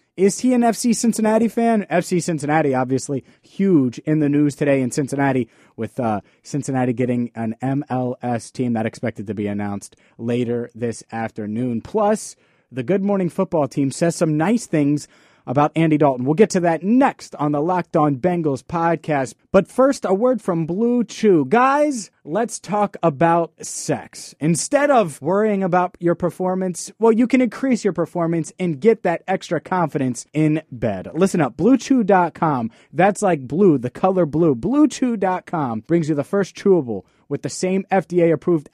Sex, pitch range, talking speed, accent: male, 140-190 Hz, 165 wpm, American